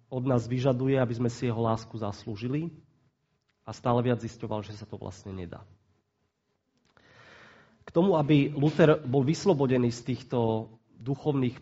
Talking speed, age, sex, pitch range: 140 wpm, 40-59, male, 115-135 Hz